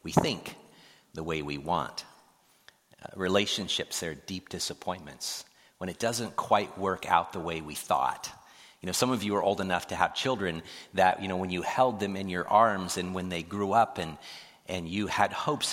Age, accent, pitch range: 40-59, American, 90-110 Hz